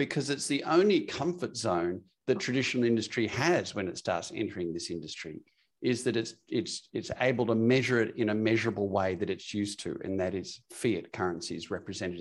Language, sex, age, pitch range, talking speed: English, male, 50-69, 100-125 Hz, 190 wpm